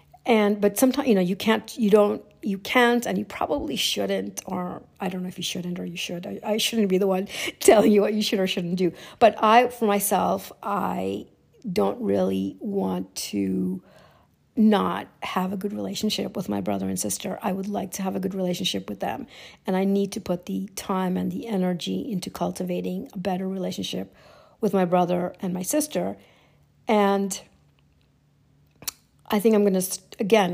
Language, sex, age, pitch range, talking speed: English, female, 50-69, 180-205 Hz, 185 wpm